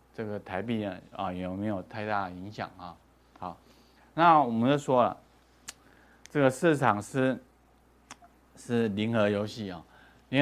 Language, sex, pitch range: Chinese, male, 105-130 Hz